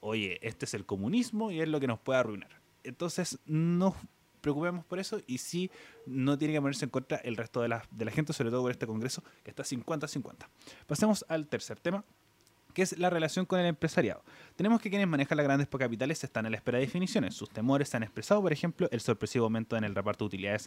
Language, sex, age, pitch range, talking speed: Spanish, male, 20-39, 120-175 Hz, 230 wpm